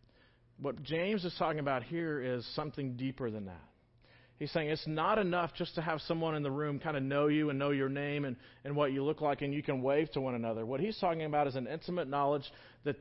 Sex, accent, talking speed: male, American, 245 wpm